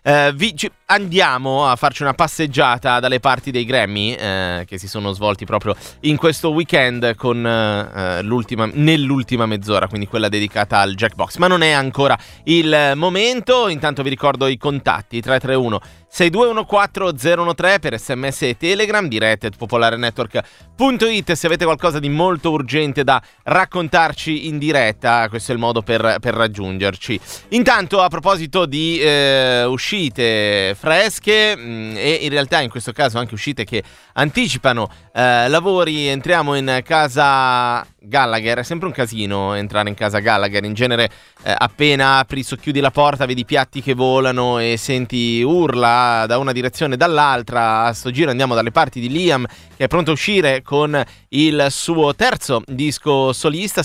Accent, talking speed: native, 155 wpm